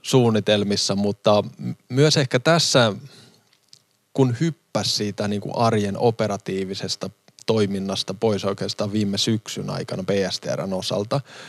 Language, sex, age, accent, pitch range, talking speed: Finnish, male, 20-39, native, 100-120 Hz, 105 wpm